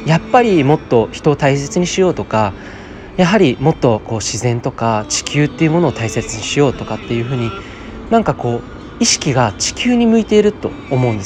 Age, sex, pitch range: 20-39, male, 115-165 Hz